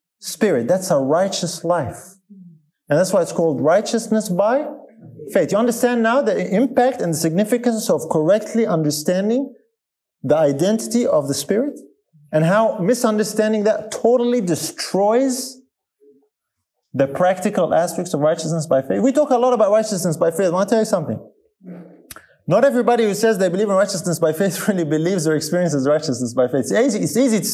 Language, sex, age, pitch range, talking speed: English, male, 30-49, 160-230 Hz, 170 wpm